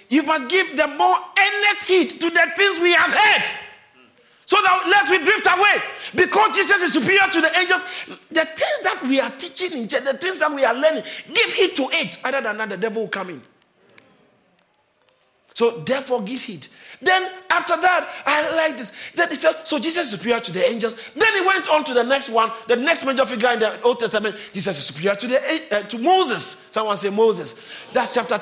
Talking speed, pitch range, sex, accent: 210 wpm, 225-335 Hz, male, Nigerian